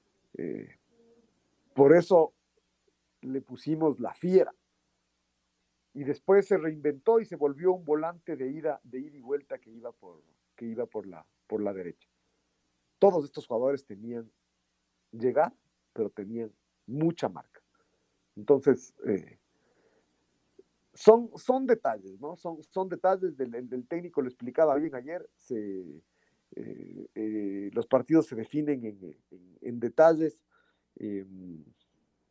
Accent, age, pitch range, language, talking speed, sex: Mexican, 50-69, 110-160 Hz, Spanish, 130 wpm, male